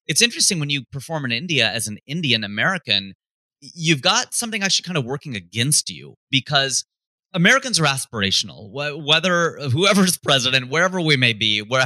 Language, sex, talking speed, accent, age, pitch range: English, male, 160 wpm, American, 30-49, 105-145 Hz